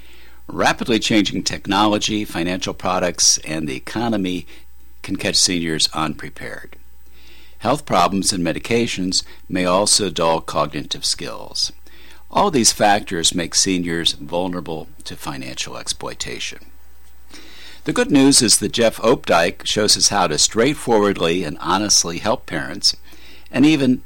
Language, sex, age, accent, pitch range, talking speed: English, male, 60-79, American, 80-100 Hz, 120 wpm